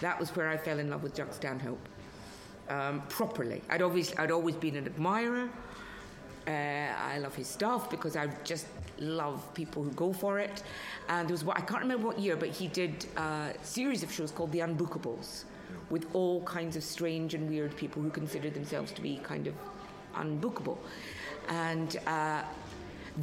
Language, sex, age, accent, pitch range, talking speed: English, female, 50-69, British, 145-180 Hz, 180 wpm